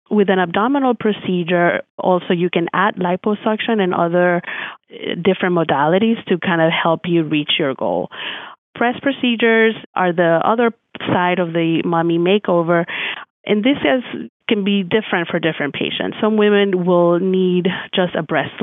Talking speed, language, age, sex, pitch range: 150 wpm, English, 30-49, female, 170-210 Hz